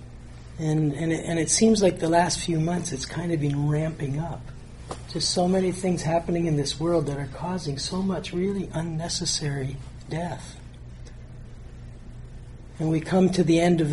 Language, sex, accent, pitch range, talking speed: English, male, American, 130-170 Hz, 170 wpm